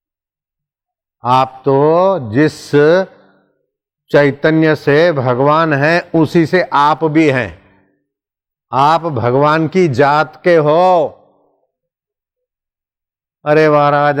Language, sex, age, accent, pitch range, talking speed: Hindi, male, 50-69, native, 135-160 Hz, 85 wpm